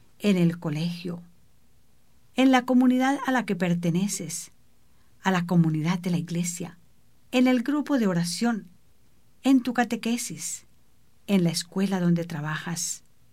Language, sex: English, female